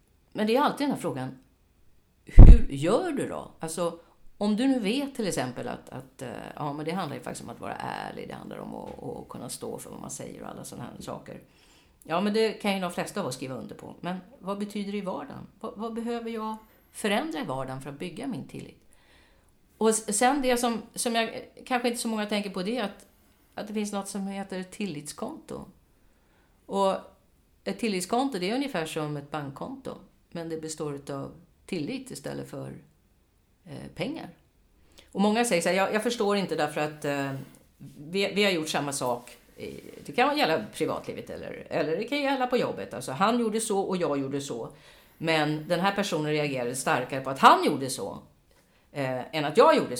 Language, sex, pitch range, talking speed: Swedish, female, 150-230 Hz, 205 wpm